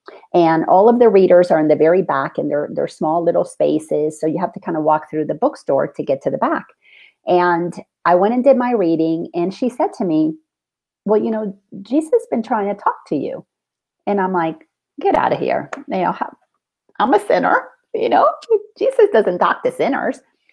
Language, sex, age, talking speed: English, female, 40-59, 210 wpm